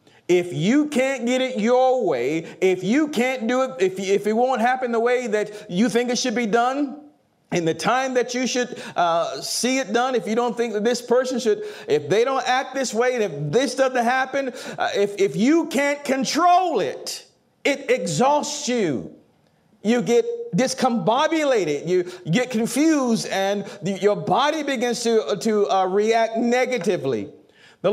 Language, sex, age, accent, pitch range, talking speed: English, male, 40-59, American, 195-255 Hz, 170 wpm